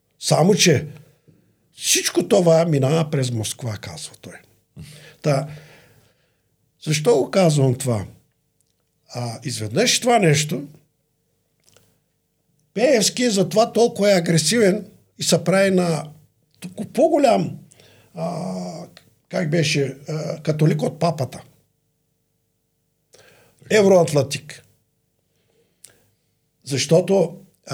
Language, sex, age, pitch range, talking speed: Bulgarian, male, 50-69, 135-180 Hz, 85 wpm